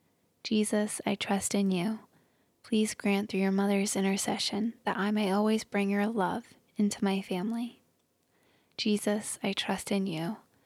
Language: English